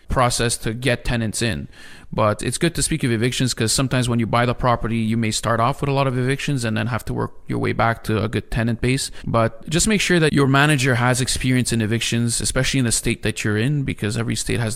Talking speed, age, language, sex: 255 wpm, 20-39, English, male